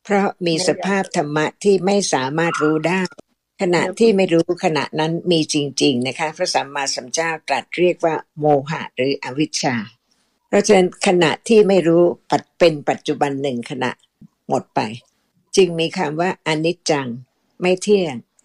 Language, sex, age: Thai, female, 60-79